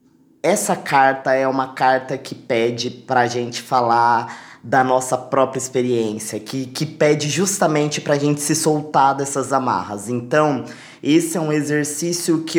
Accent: Brazilian